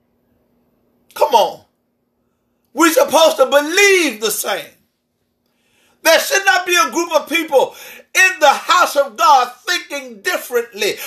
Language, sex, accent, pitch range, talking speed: English, male, American, 245-395 Hz, 125 wpm